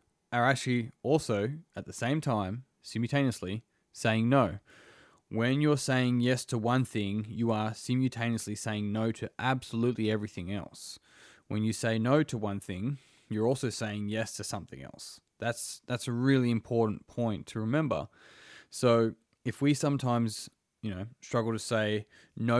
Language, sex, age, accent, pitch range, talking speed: English, male, 20-39, Australian, 105-130 Hz, 155 wpm